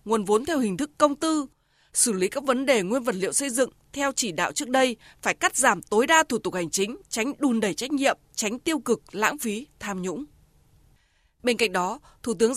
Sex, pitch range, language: female, 210-290 Hz, Vietnamese